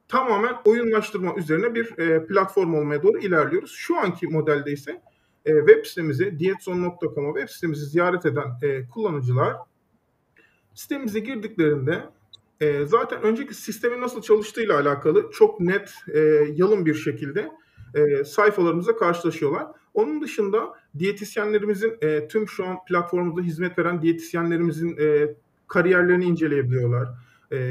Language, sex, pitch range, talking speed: Turkish, male, 150-215 Hz, 120 wpm